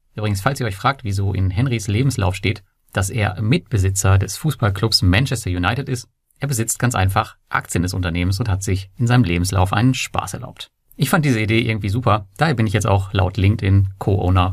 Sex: male